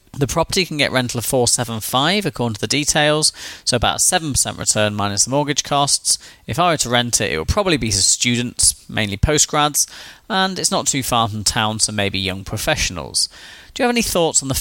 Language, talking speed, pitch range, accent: English, 220 wpm, 110-150 Hz, British